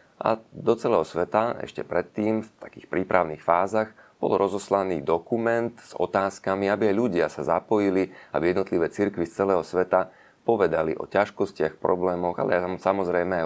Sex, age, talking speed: male, 30-49, 150 wpm